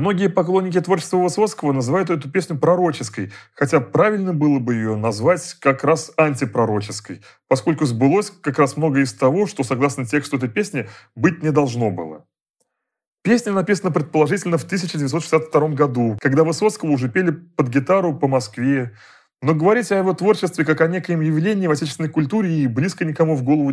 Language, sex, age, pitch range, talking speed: Russian, male, 30-49, 130-170 Hz, 160 wpm